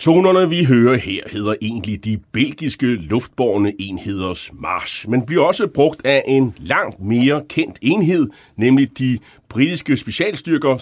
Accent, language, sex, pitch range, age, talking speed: native, Danish, male, 105-145 Hz, 30-49, 140 wpm